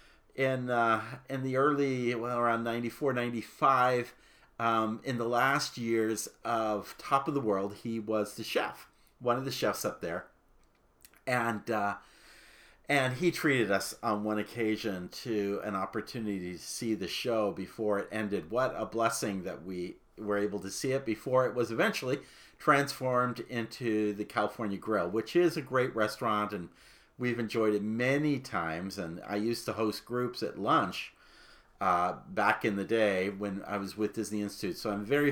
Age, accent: 50-69, American